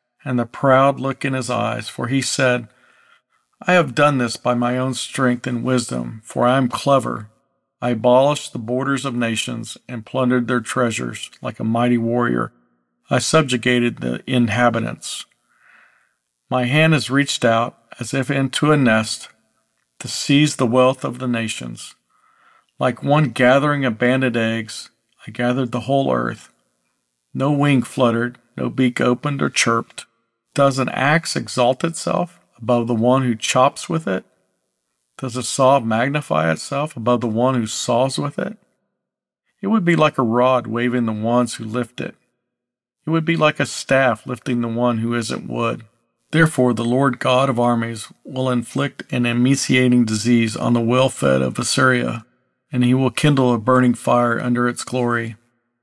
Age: 50-69